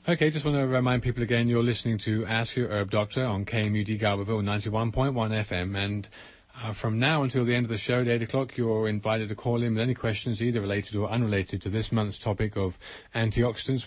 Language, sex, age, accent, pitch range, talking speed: English, male, 40-59, British, 100-120 Hz, 215 wpm